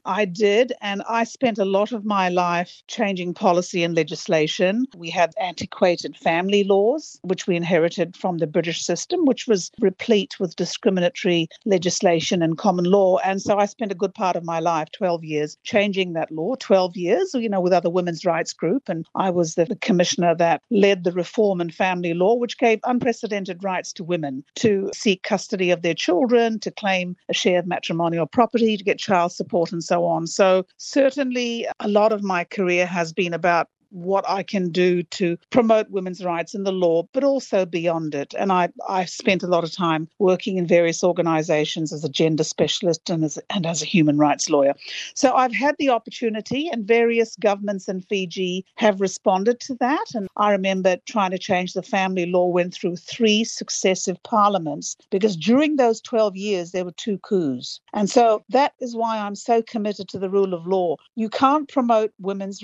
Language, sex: English, female